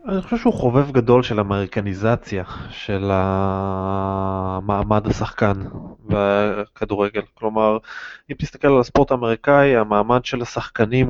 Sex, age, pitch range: male, 20-39, 110-135 Hz